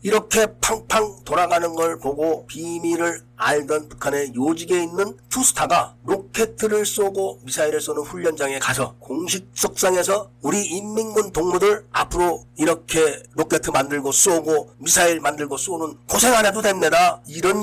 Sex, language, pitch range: male, Korean, 140-195 Hz